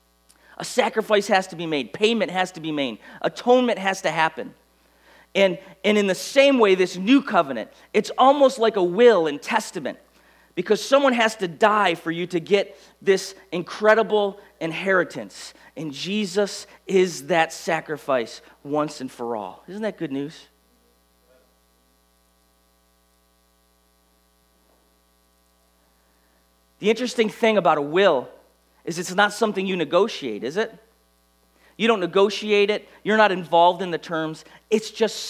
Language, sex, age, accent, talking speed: English, male, 40-59, American, 140 wpm